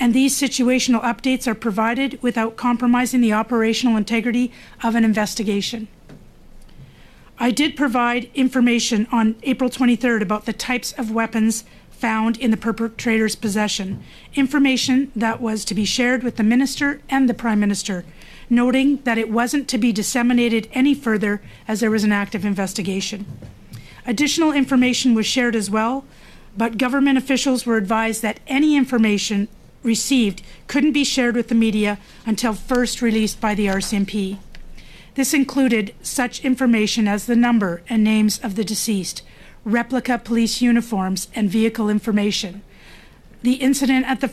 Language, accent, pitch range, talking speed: English, American, 215-250 Hz, 145 wpm